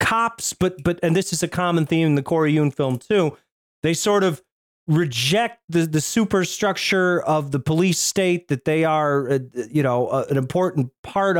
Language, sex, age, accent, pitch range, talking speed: English, male, 30-49, American, 140-180 Hz, 190 wpm